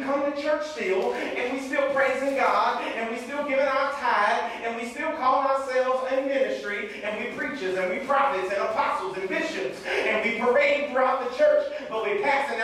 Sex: male